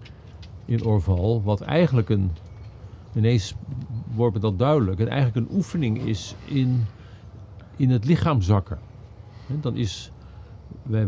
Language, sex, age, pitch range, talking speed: Dutch, male, 50-69, 100-130 Hz, 135 wpm